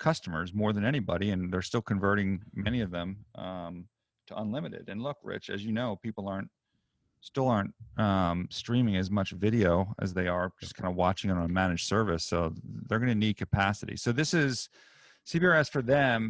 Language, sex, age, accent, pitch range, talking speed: English, male, 40-59, American, 95-115 Hz, 190 wpm